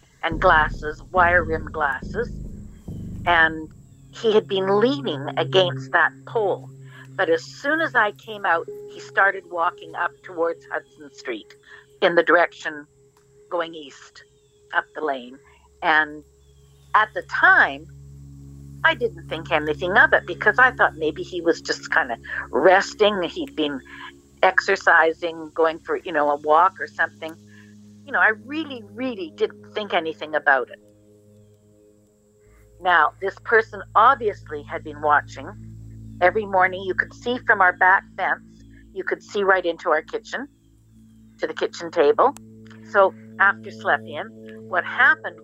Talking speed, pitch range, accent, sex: 145 wpm, 110-185 Hz, American, female